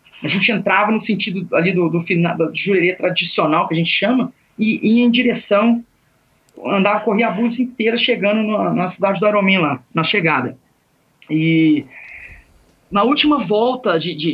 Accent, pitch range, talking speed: Brazilian, 195-245 Hz, 170 wpm